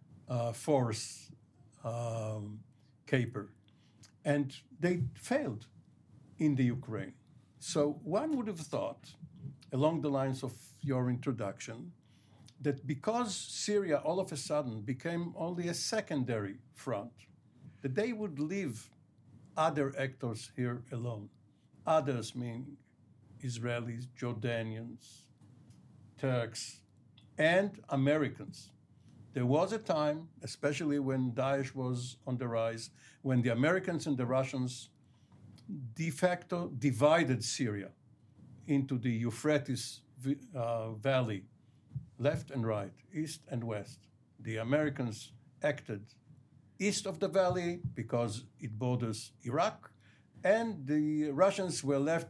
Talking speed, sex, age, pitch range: 110 wpm, male, 60-79, 120-150 Hz